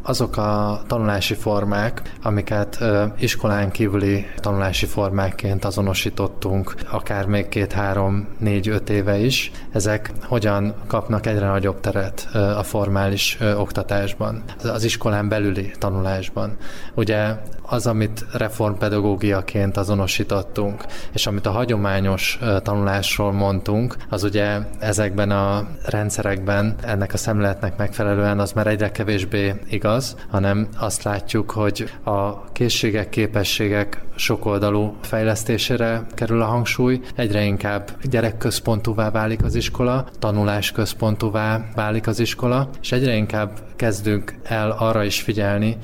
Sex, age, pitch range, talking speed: male, 20-39, 100-110 Hz, 115 wpm